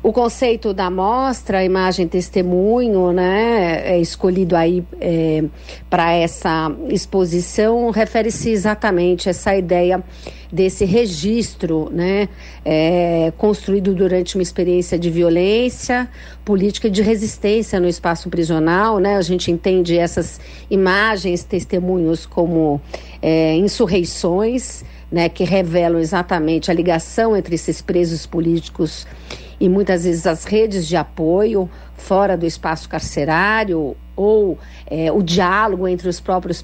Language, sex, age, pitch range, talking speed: Portuguese, female, 50-69, 170-210 Hz, 120 wpm